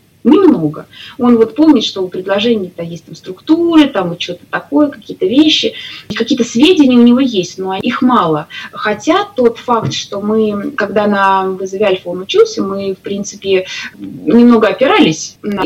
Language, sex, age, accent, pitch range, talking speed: Russian, female, 20-39, native, 185-240 Hz, 155 wpm